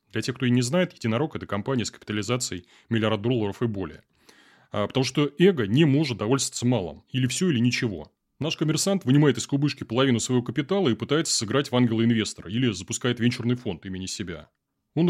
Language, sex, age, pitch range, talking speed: Russian, male, 30-49, 110-140 Hz, 190 wpm